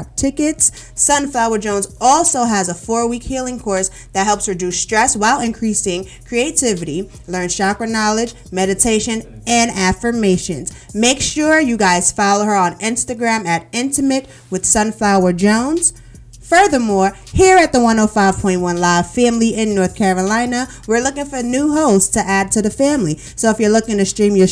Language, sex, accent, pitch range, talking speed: English, female, American, 190-255 Hz, 150 wpm